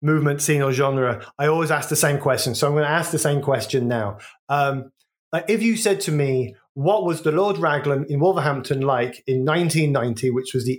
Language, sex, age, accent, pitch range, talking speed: English, male, 30-49, British, 130-165 Hz, 210 wpm